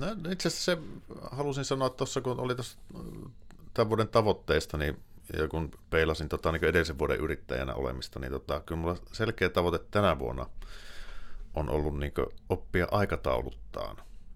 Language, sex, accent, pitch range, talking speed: Finnish, male, native, 75-95 Hz, 150 wpm